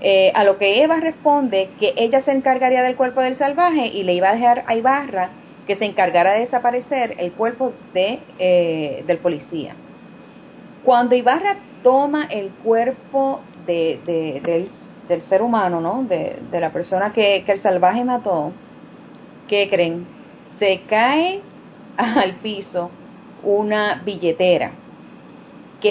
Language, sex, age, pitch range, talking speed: English, female, 30-49, 185-255 Hz, 145 wpm